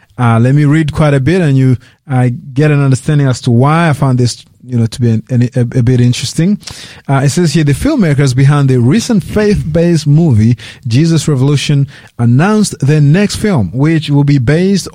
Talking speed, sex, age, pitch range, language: 205 wpm, male, 30-49, 125-165 Hz, English